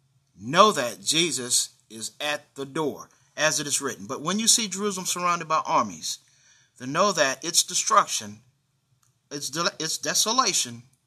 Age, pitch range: 50-69, 130-190 Hz